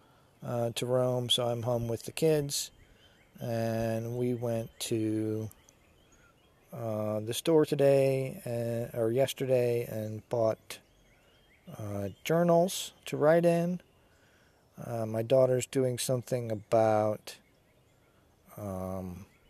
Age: 40-59